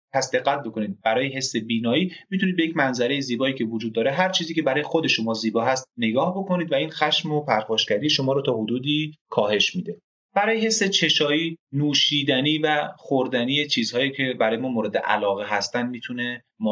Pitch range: 110-150 Hz